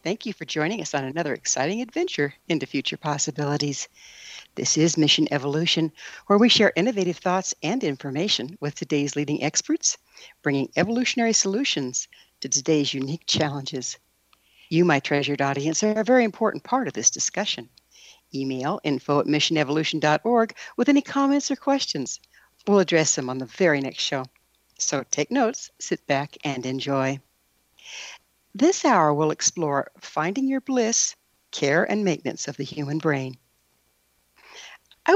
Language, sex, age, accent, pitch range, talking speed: English, female, 60-79, American, 145-230 Hz, 145 wpm